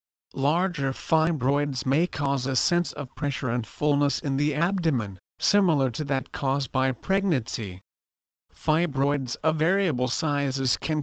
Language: English